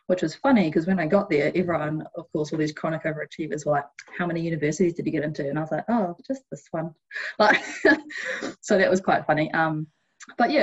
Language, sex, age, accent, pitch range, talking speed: English, female, 20-39, Australian, 155-180 Hz, 225 wpm